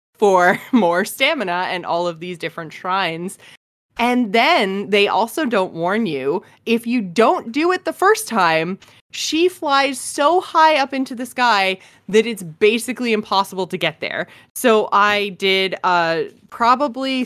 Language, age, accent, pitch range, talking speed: English, 20-39, American, 185-245 Hz, 155 wpm